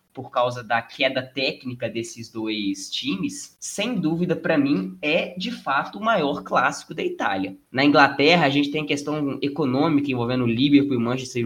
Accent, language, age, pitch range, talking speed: Brazilian, Portuguese, 20-39, 125-175 Hz, 160 wpm